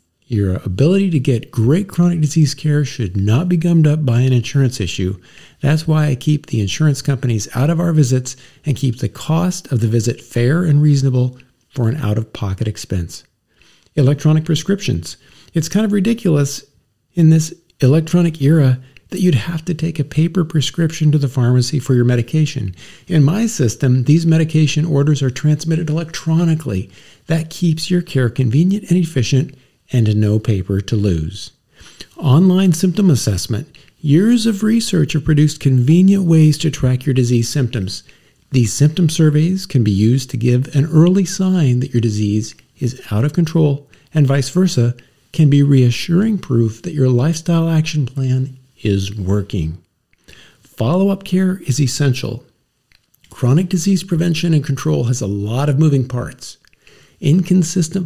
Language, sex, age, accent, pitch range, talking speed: English, male, 50-69, American, 125-160 Hz, 155 wpm